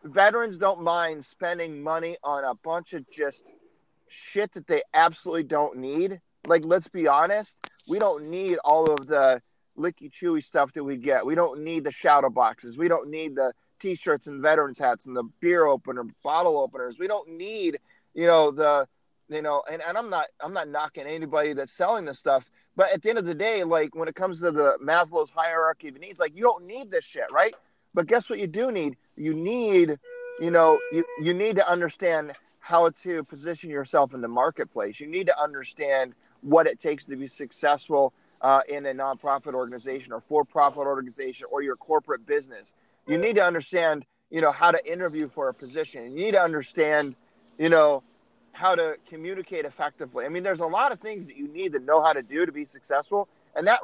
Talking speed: 205 wpm